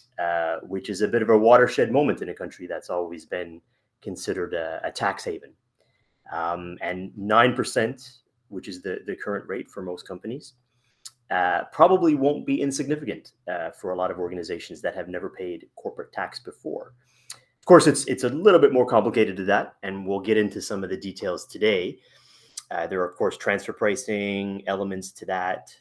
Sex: male